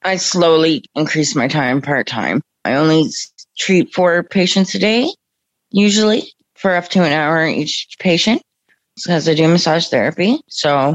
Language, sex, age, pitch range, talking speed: English, female, 30-49, 150-180 Hz, 150 wpm